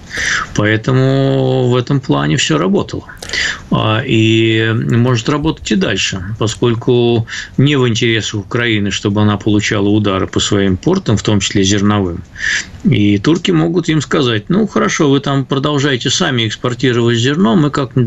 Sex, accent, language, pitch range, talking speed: male, native, Russian, 105-130 Hz, 140 wpm